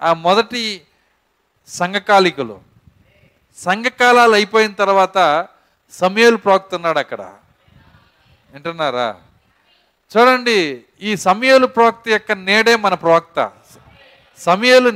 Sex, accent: male, native